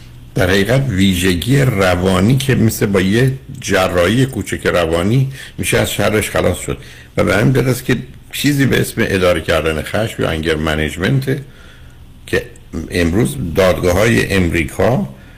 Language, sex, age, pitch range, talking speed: Persian, male, 60-79, 75-110 Hz, 135 wpm